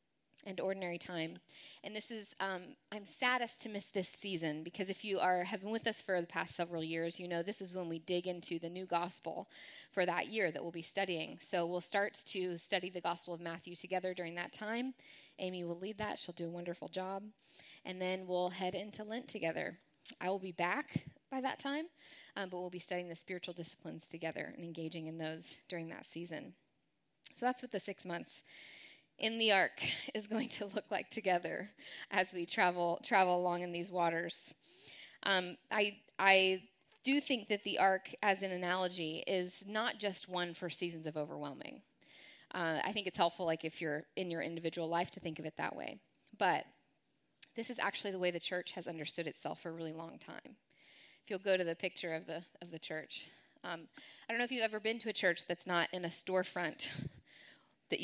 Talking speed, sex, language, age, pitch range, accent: 205 wpm, female, English, 20-39, 170-200 Hz, American